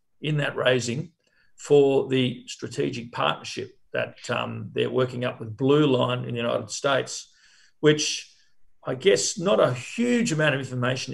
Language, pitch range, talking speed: English, 125-145 Hz, 150 wpm